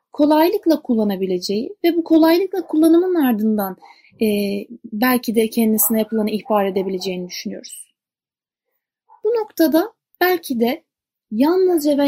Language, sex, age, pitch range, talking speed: Turkish, female, 30-49, 215-310 Hz, 100 wpm